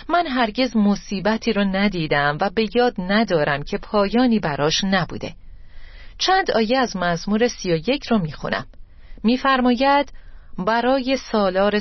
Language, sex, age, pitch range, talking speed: Persian, female, 40-59, 160-225 Hz, 115 wpm